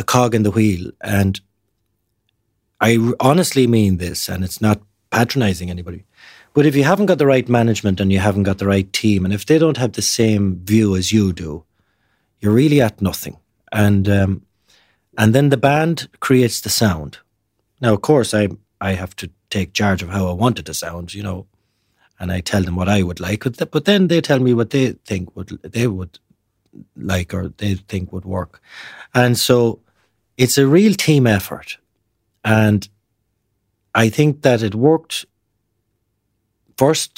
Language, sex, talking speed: English, male, 180 wpm